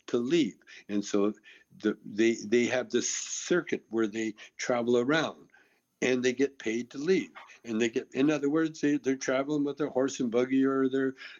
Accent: American